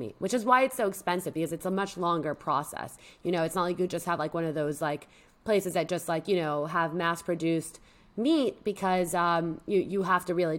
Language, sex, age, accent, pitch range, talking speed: English, female, 20-39, American, 165-200 Hz, 245 wpm